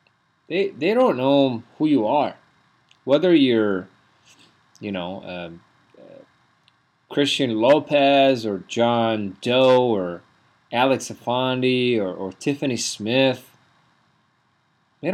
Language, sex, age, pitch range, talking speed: English, male, 30-49, 105-140 Hz, 105 wpm